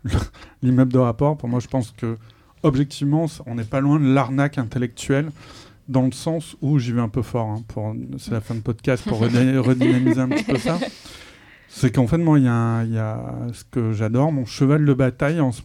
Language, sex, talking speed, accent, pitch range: French, male, 210 wpm, French, 115-150 Hz